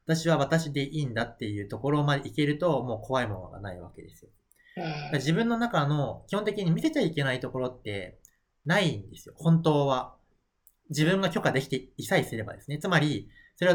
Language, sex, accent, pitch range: Japanese, male, native, 120-175 Hz